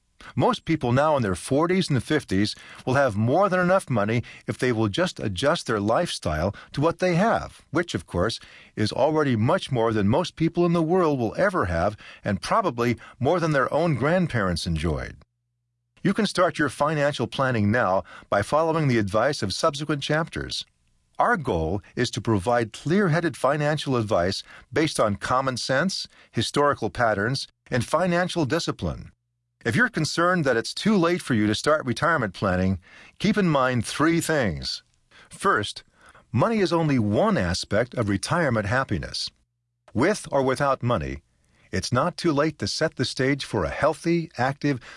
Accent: American